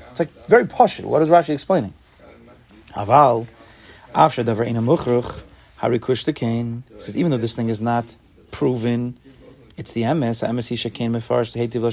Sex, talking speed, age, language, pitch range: male, 110 wpm, 30-49, English, 105-125 Hz